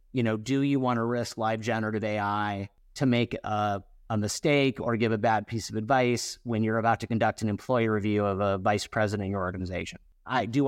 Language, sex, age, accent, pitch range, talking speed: English, male, 30-49, American, 105-125 Hz, 220 wpm